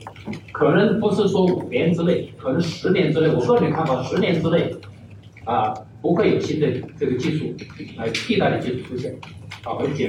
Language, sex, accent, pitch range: Chinese, male, native, 120-170 Hz